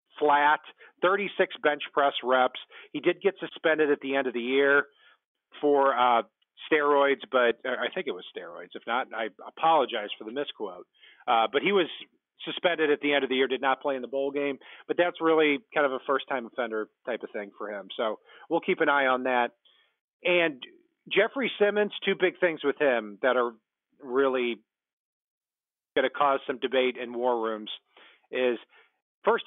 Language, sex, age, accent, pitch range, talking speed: English, male, 40-59, American, 125-155 Hz, 185 wpm